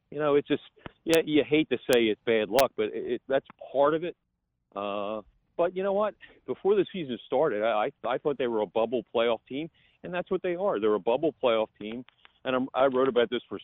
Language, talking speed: English, 245 wpm